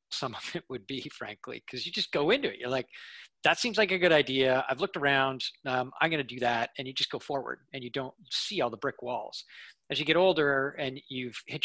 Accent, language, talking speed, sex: American, English, 250 wpm, male